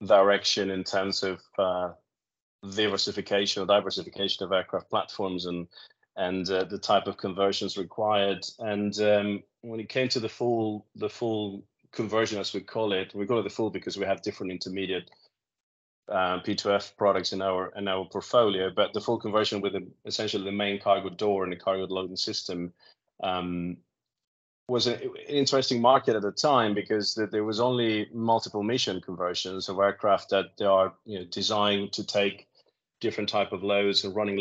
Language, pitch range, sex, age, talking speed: English, 95-105 Hz, male, 20-39, 165 wpm